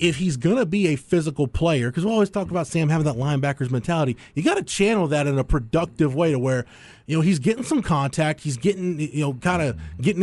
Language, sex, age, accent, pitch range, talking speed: English, male, 30-49, American, 135-190 Hz, 235 wpm